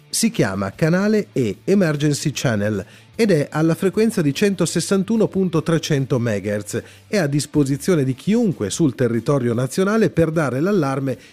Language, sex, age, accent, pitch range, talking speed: Italian, male, 40-59, native, 120-170 Hz, 125 wpm